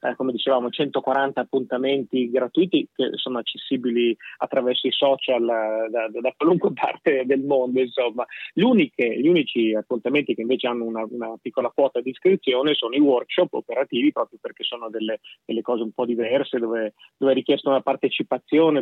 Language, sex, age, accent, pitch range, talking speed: Italian, male, 30-49, native, 120-140 Hz, 165 wpm